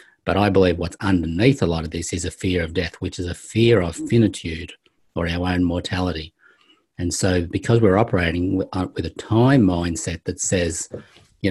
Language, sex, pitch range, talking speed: English, male, 85-100 Hz, 190 wpm